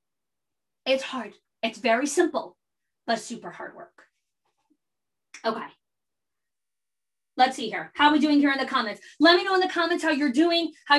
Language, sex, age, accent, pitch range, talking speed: English, female, 20-39, American, 240-295 Hz, 170 wpm